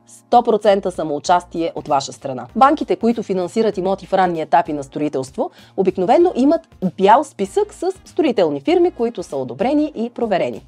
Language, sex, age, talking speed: Bulgarian, female, 30-49, 145 wpm